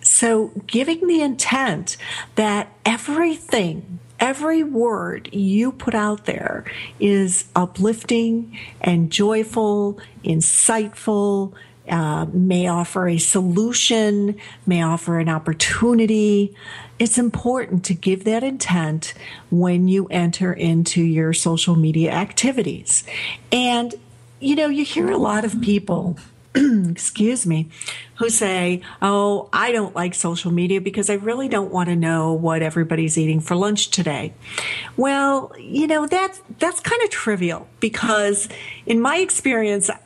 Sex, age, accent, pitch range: female, 50-69, American, 175-230 Hz